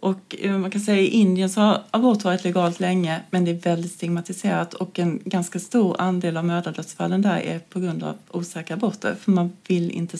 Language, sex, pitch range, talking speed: Swedish, female, 170-195 Hz, 205 wpm